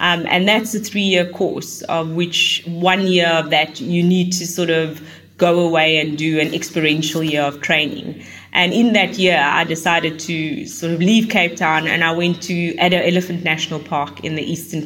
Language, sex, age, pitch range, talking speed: English, female, 20-39, 155-180 Hz, 200 wpm